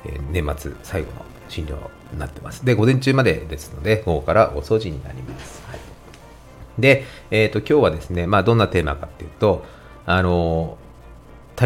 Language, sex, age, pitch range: Japanese, male, 40-59, 75-110 Hz